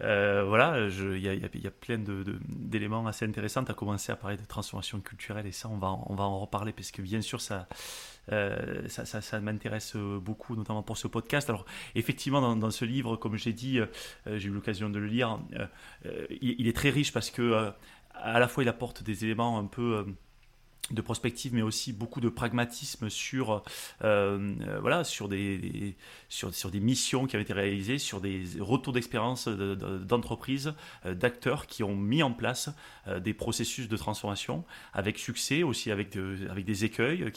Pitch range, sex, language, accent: 105-120 Hz, male, French, French